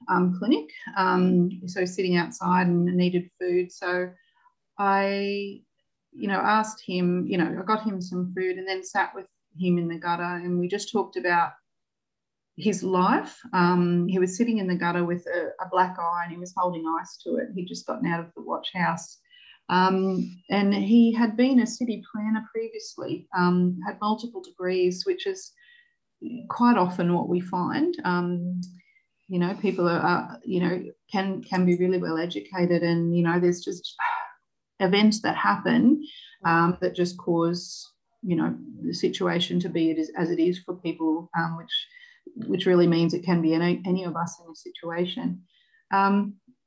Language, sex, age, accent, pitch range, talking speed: English, female, 30-49, Australian, 175-205 Hz, 175 wpm